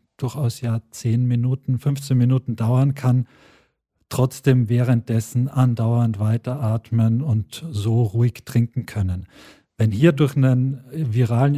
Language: German